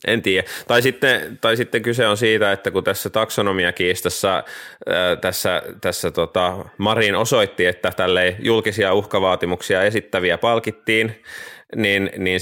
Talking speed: 125 wpm